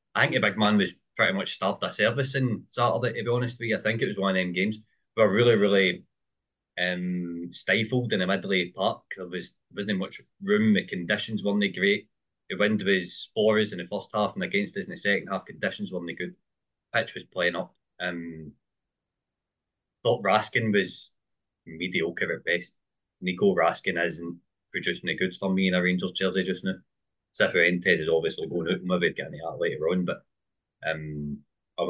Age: 20-39